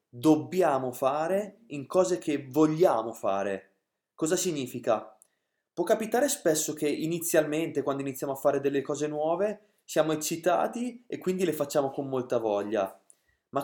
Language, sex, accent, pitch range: Italian, male, native, 140-195 Hz